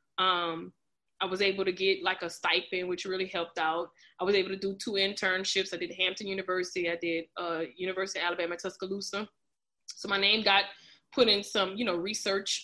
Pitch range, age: 180-210 Hz, 20-39